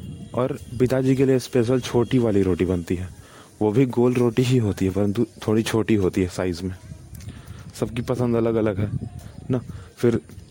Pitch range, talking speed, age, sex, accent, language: 105-120 Hz, 175 wpm, 20-39, male, native, Hindi